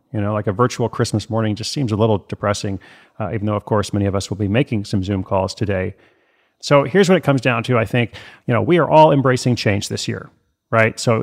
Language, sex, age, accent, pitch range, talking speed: English, male, 40-59, American, 105-135 Hz, 250 wpm